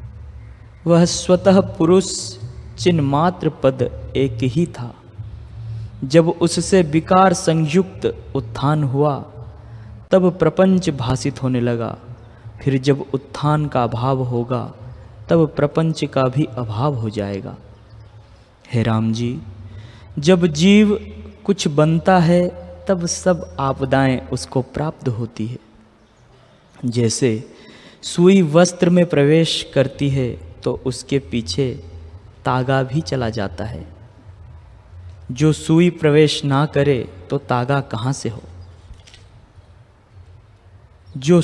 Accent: native